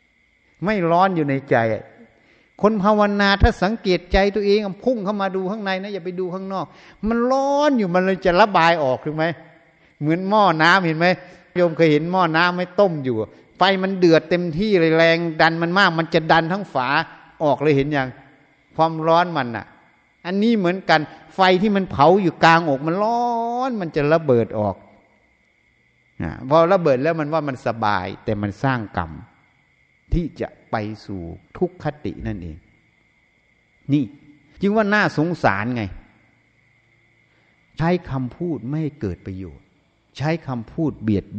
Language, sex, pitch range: Thai, male, 120-180 Hz